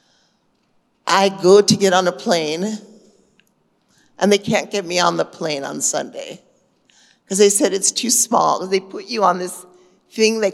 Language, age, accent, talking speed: Gujarati, 50-69, American, 170 wpm